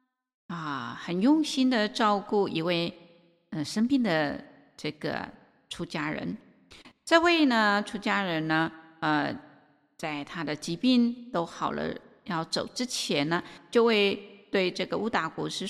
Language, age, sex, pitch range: Chinese, 50-69, female, 170-245 Hz